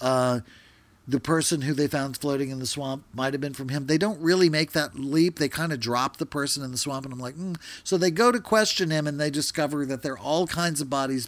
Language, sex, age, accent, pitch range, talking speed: English, male, 50-69, American, 115-155 Hz, 260 wpm